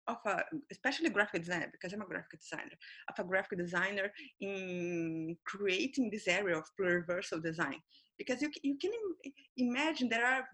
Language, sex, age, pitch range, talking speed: English, female, 30-49, 195-270 Hz, 160 wpm